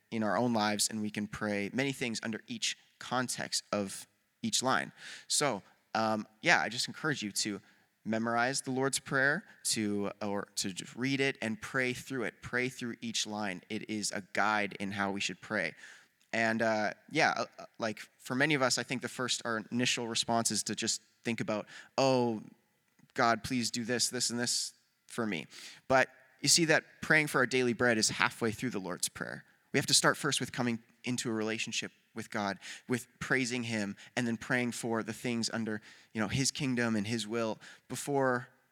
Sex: male